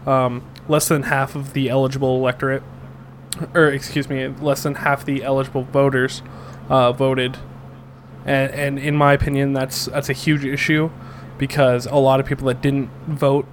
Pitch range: 130-140 Hz